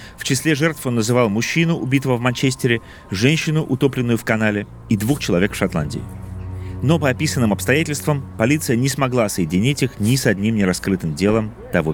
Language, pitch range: Russian, 95-130 Hz